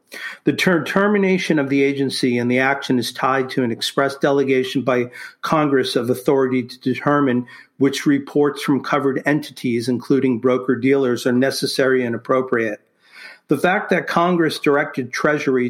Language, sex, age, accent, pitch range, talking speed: English, male, 50-69, American, 125-145 Hz, 145 wpm